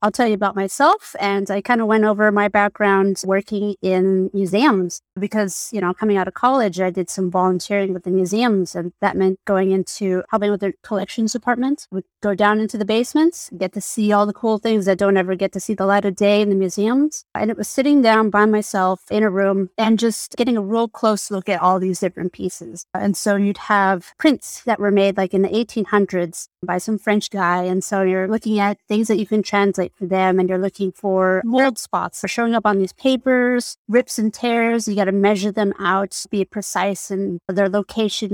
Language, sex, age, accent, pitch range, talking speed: English, female, 30-49, American, 190-220 Hz, 220 wpm